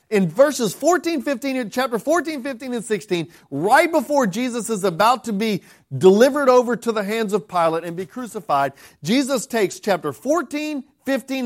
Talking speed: 170 wpm